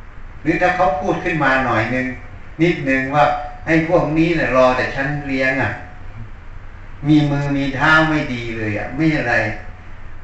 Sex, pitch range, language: male, 100-145 Hz, Thai